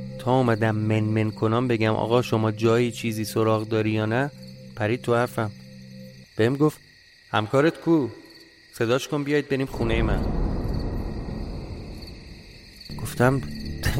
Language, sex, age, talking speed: Persian, male, 30-49, 115 wpm